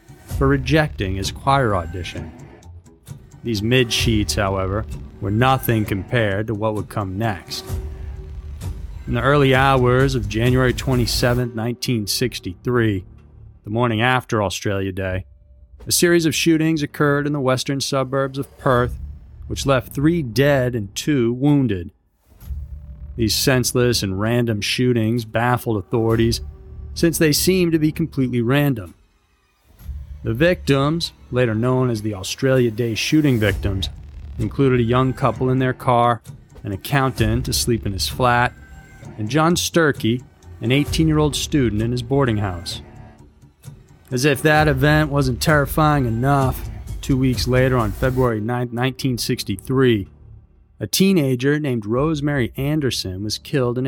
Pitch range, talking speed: 100-130 Hz, 130 wpm